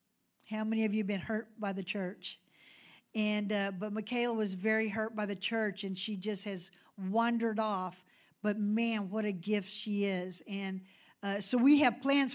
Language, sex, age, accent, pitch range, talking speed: English, female, 50-69, American, 205-250 Hz, 190 wpm